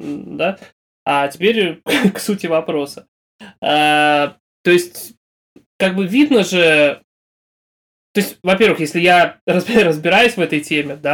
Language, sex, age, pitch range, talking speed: Russian, male, 20-39, 150-180 Hz, 125 wpm